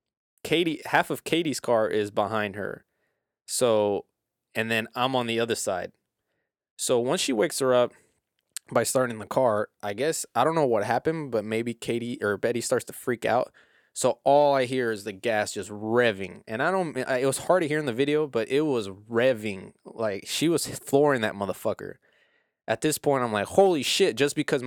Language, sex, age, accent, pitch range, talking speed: English, male, 20-39, American, 110-140 Hz, 195 wpm